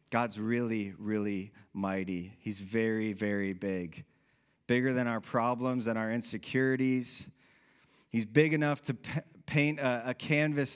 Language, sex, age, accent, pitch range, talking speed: English, male, 30-49, American, 110-135 Hz, 130 wpm